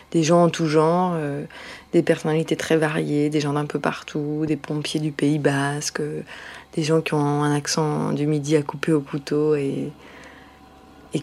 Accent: French